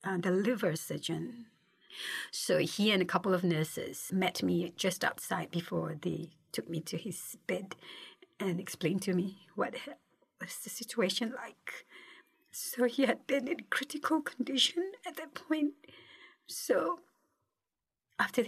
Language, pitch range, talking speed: English, 205-280 Hz, 140 wpm